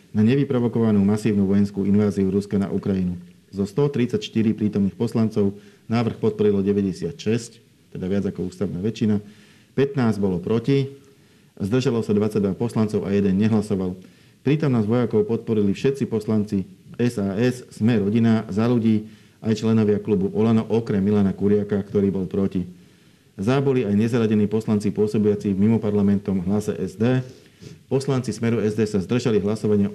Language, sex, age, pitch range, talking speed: Slovak, male, 40-59, 100-115 Hz, 135 wpm